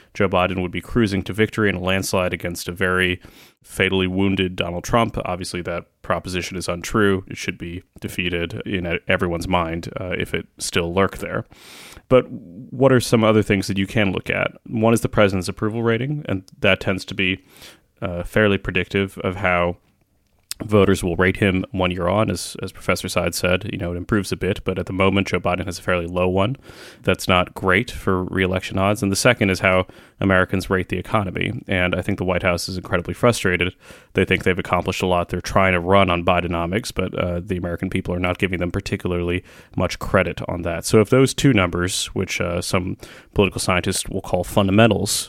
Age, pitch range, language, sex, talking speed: 30-49, 90-105 Hz, English, male, 205 wpm